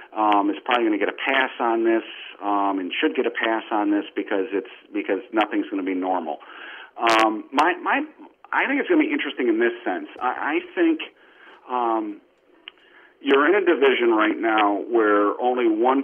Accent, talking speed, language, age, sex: American, 195 wpm, English, 40-59, male